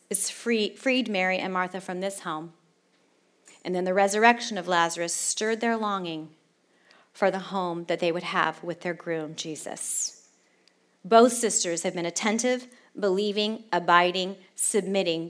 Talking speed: 145 wpm